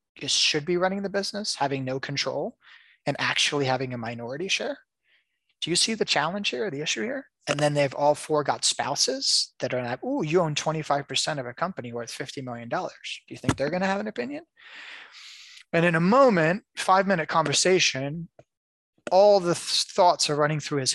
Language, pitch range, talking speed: English, 135-175 Hz, 190 wpm